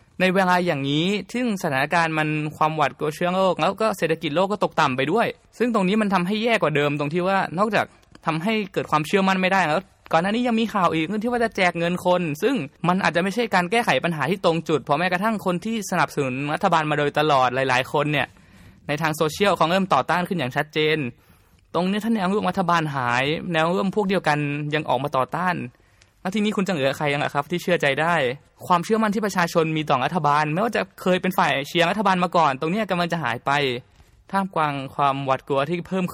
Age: 20-39